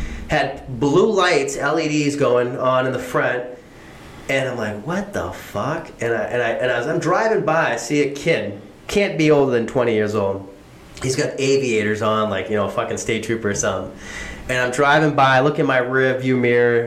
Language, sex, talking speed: English, male, 215 wpm